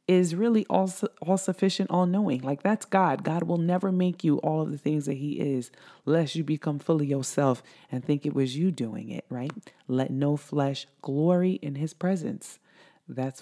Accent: American